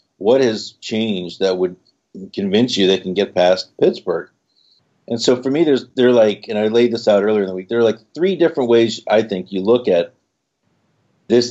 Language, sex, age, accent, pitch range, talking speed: English, male, 50-69, American, 95-115 Hz, 210 wpm